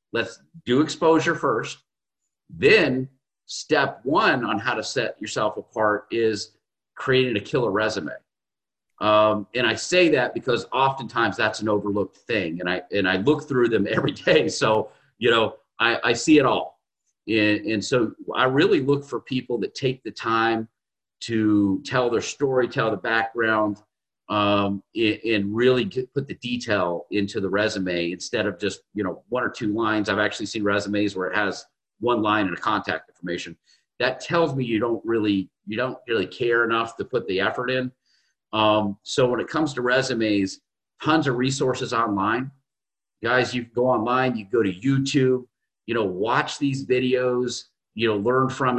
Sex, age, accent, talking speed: male, 40-59, American, 170 wpm